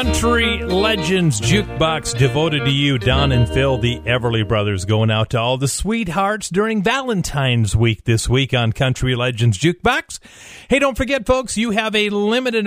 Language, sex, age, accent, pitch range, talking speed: English, male, 40-59, American, 130-175 Hz, 165 wpm